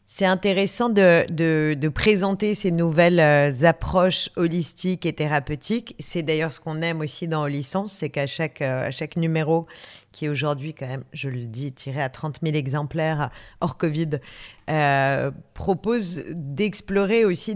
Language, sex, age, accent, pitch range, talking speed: French, female, 40-59, French, 145-175 Hz, 155 wpm